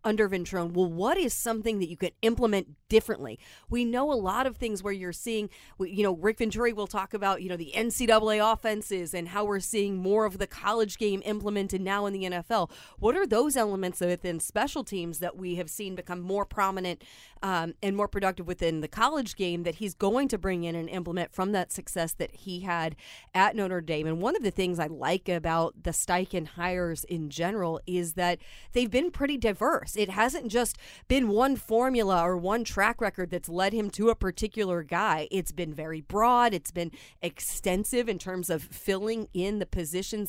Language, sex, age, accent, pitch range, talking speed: English, female, 30-49, American, 180-220 Hz, 200 wpm